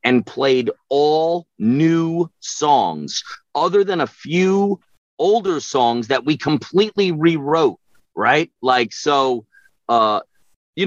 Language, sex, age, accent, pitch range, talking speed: English, male, 40-59, American, 110-140 Hz, 110 wpm